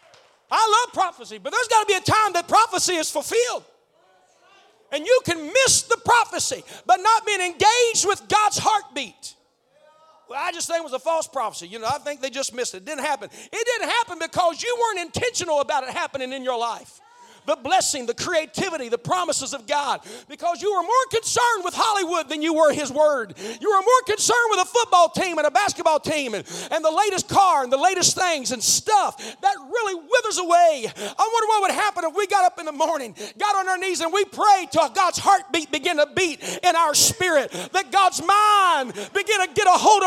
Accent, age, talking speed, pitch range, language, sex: American, 40-59, 215 wpm, 320-460 Hz, English, male